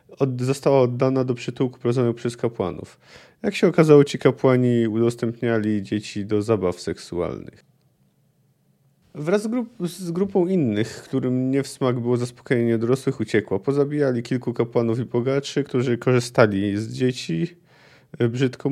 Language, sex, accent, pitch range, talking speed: Polish, male, native, 115-145 Hz, 130 wpm